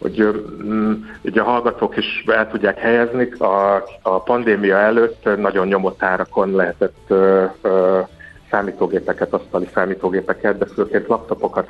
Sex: male